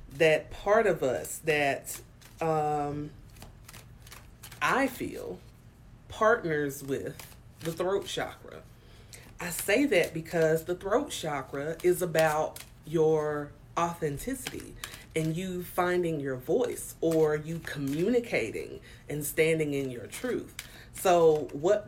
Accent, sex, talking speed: American, female, 105 wpm